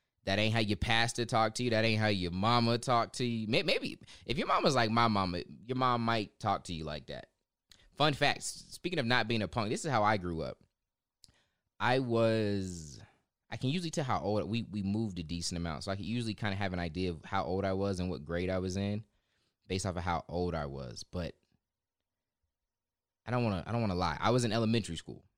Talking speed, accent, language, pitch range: 235 wpm, American, English, 85-115 Hz